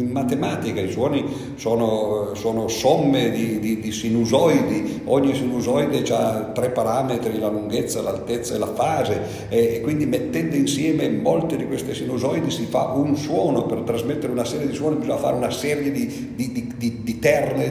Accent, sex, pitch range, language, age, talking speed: native, male, 110-140 Hz, Italian, 50-69, 170 wpm